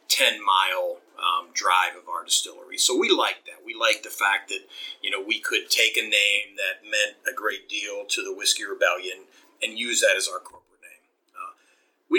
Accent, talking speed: American, 200 wpm